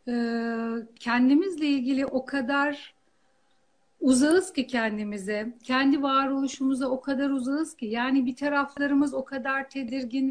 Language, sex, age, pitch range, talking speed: Turkish, female, 60-79, 265-310 Hz, 110 wpm